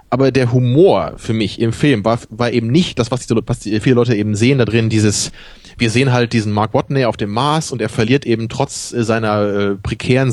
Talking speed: 230 wpm